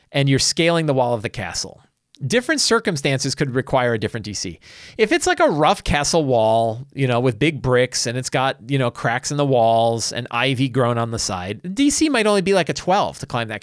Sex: male